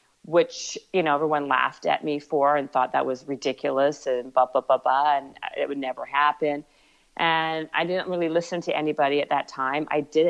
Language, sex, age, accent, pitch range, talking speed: English, female, 40-59, American, 140-160 Hz, 205 wpm